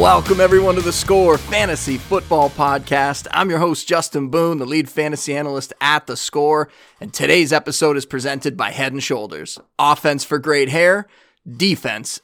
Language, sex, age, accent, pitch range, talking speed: English, male, 30-49, American, 140-185 Hz, 165 wpm